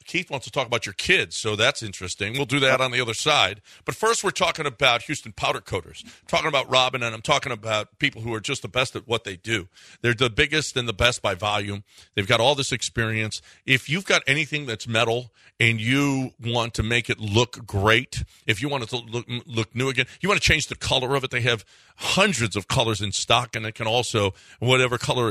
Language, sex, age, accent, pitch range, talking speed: English, male, 40-59, American, 110-130 Hz, 235 wpm